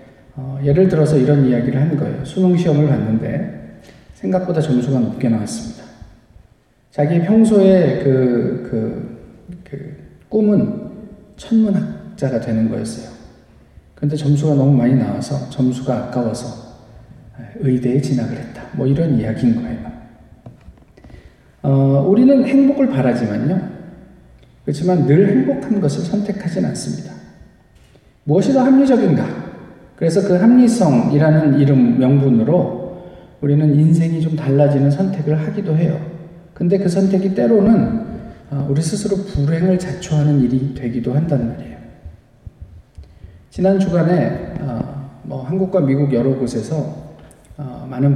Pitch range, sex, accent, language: 125-175 Hz, male, native, Korean